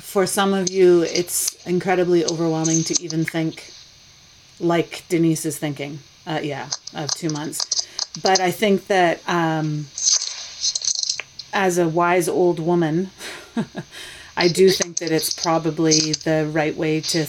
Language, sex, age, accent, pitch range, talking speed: English, female, 30-49, American, 160-185 Hz, 135 wpm